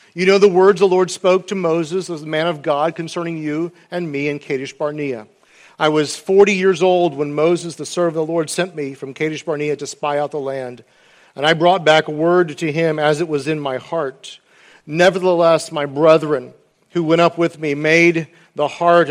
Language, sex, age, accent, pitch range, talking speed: English, male, 50-69, American, 150-190 Hz, 205 wpm